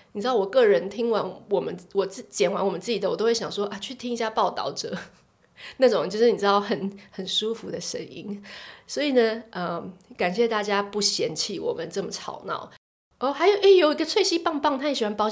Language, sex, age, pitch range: Chinese, female, 20-39, 190-240 Hz